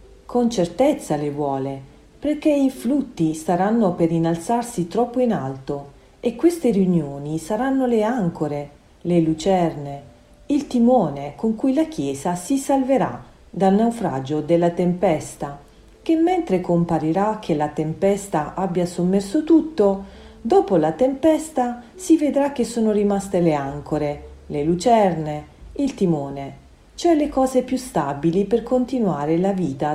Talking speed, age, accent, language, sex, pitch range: 130 wpm, 40-59, native, Italian, female, 155-230 Hz